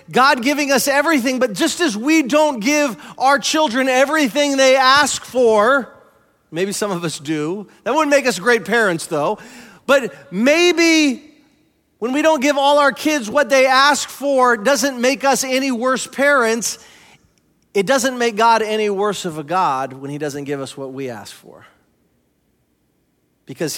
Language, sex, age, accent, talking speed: English, male, 40-59, American, 165 wpm